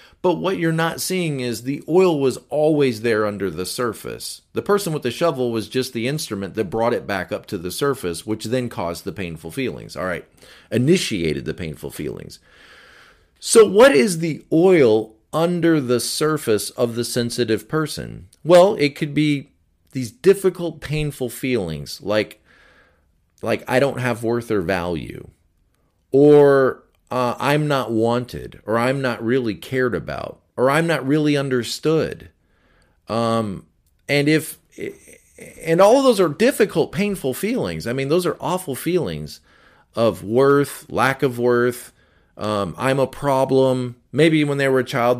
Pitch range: 110-150 Hz